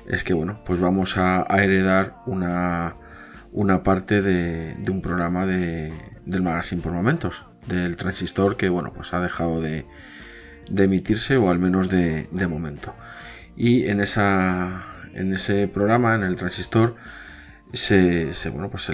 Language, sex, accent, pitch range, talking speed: Spanish, male, Spanish, 90-105 Hz, 160 wpm